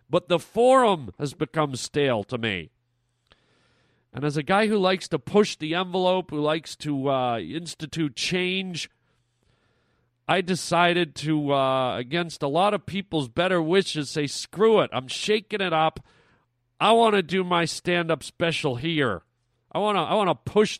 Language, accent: English, American